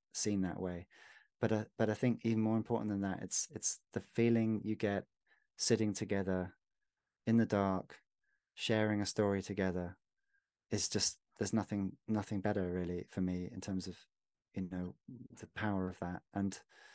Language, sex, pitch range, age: English, male, 100-115 Hz, 20-39